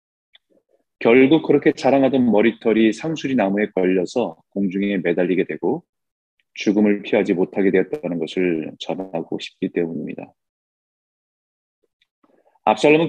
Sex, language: male, Korean